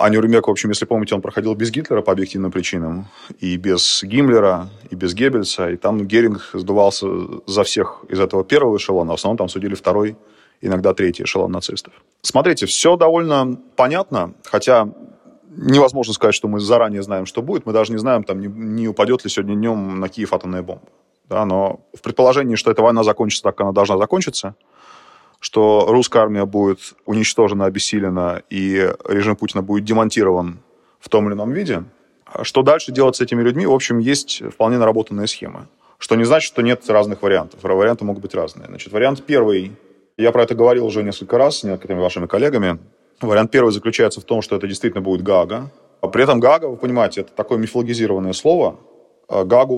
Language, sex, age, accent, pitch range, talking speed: Russian, male, 30-49, native, 100-120 Hz, 180 wpm